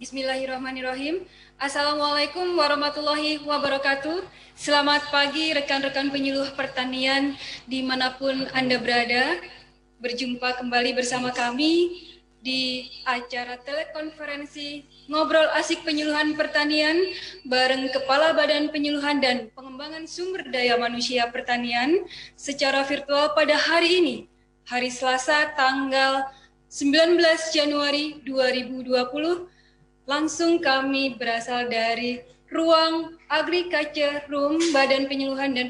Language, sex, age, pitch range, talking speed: Indonesian, female, 20-39, 250-295 Hz, 90 wpm